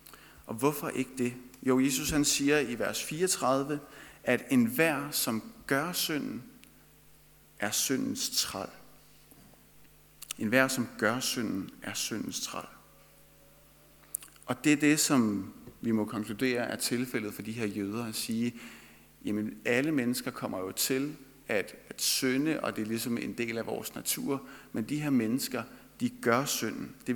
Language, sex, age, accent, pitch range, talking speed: Danish, male, 50-69, native, 120-145 Hz, 155 wpm